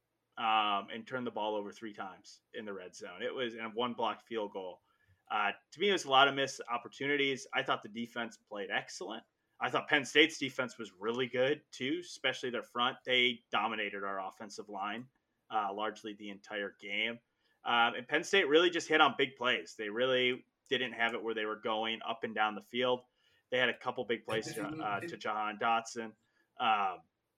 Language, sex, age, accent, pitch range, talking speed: English, male, 30-49, American, 115-140 Hz, 205 wpm